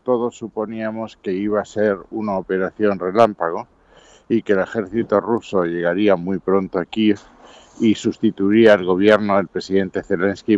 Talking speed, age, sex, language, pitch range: 140 wpm, 60-79, male, Spanish, 90-110 Hz